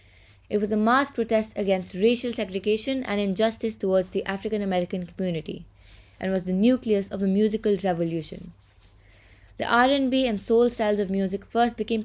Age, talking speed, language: 20-39, 155 wpm, English